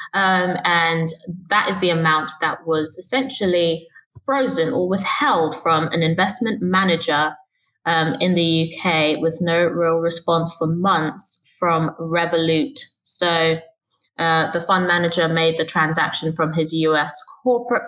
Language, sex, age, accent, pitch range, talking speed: English, female, 20-39, British, 150-175 Hz, 135 wpm